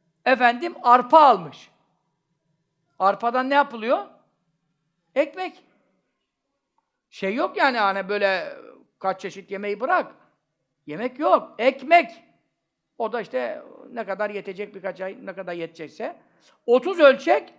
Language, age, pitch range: Turkish, 60-79, 190-275 Hz